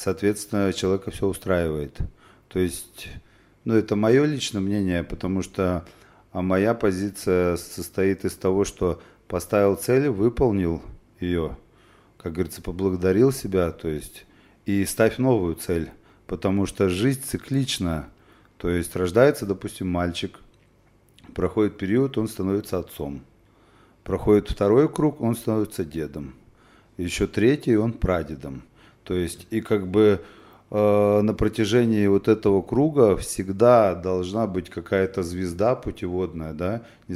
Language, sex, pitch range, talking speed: Russian, male, 85-105 Hz, 125 wpm